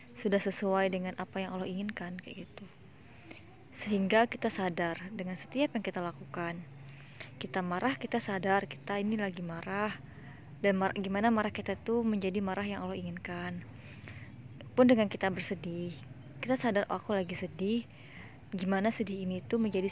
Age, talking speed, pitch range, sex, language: 20-39, 155 wpm, 180-205 Hz, female, Indonesian